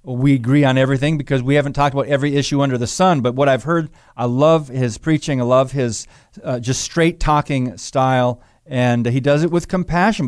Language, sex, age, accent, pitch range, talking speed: English, male, 40-59, American, 130-155 Hz, 205 wpm